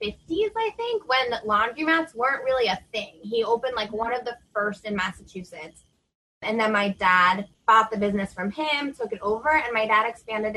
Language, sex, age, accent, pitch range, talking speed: English, female, 20-39, American, 185-230 Hz, 195 wpm